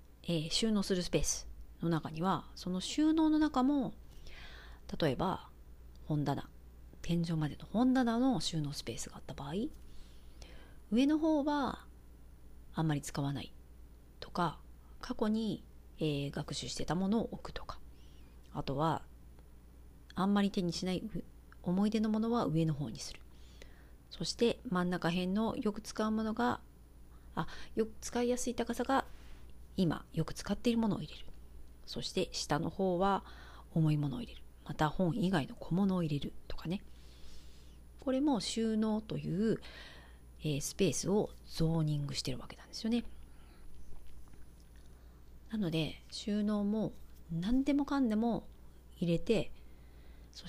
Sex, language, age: female, Japanese, 40-59